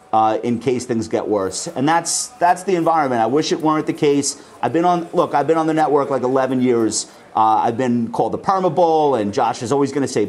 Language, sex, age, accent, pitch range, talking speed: English, male, 40-59, American, 130-170 Hz, 245 wpm